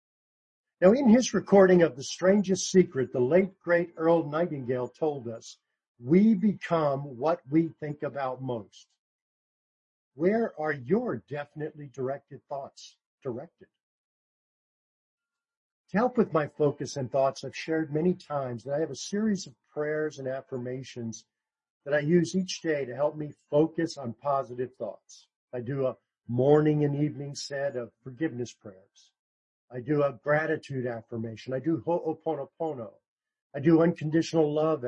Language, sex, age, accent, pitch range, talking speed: English, male, 50-69, American, 130-175 Hz, 145 wpm